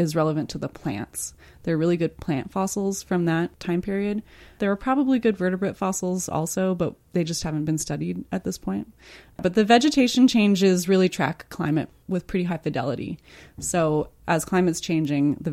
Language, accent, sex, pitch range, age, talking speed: English, American, female, 150-185 Hz, 20-39, 180 wpm